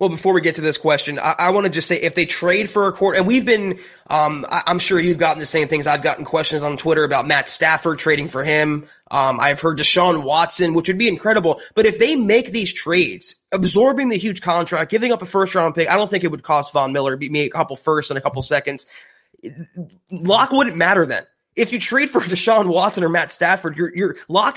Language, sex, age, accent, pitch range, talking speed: English, male, 20-39, American, 155-195 Hz, 245 wpm